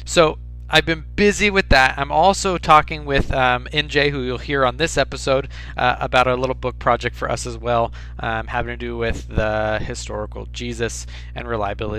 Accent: American